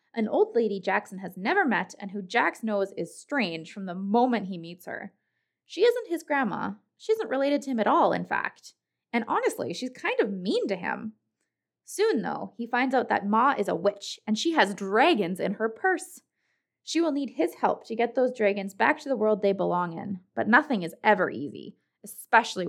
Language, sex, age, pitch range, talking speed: English, female, 20-39, 195-270 Hz, 210 wpm